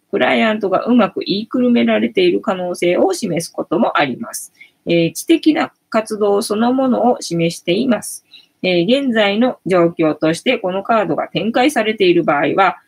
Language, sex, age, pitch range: Japanese, female, 20-39, 170-245 Hz